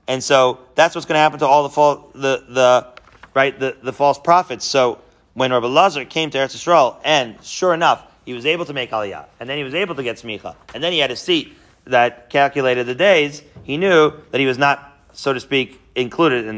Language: English